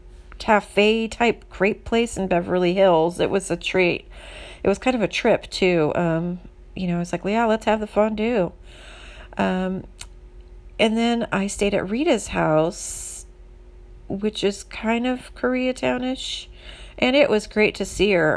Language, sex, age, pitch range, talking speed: English, female, 30-49, 155-205 Hz, 160 wpm